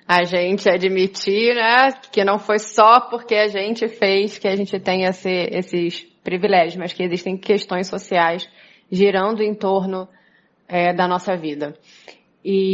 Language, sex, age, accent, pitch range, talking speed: Portuguese, female, 20-39, Brazilian, 190-225 Hz, 150 wpm